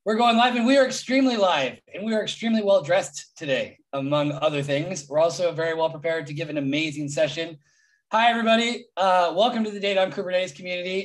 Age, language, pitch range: 20-39, English, 155-230 Hz